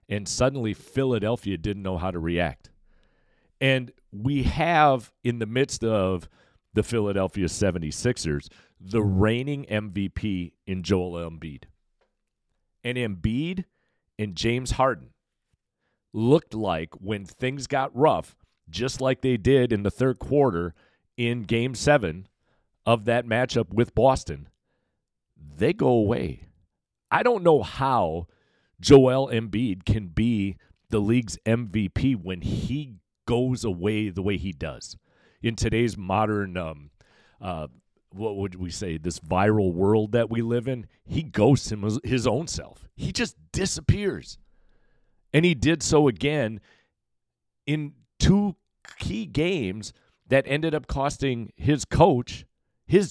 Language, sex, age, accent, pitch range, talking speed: English, male, 40-59, American, 95-130 Hz, 130 wpm